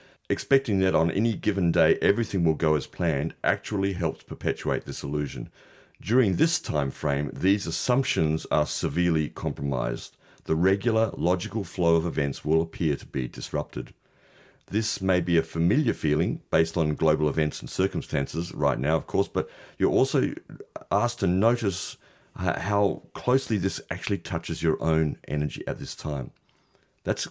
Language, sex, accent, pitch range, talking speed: English, male, Australian, 80-100 Hz, 155 wpm